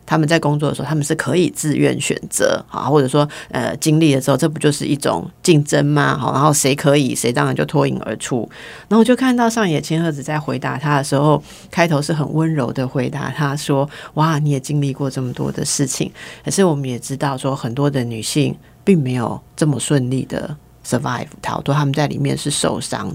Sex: female